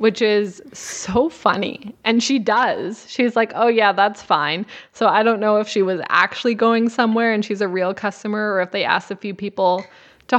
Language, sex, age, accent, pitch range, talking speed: English, female, 20-39, American, 190-230 Hz, 210 wpm